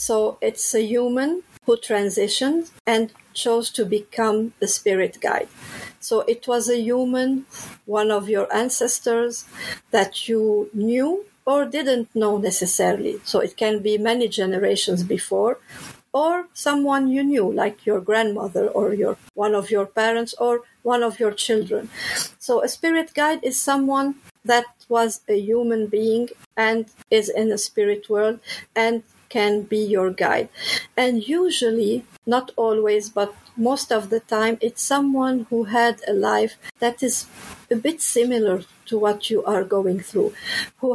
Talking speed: 150 wpm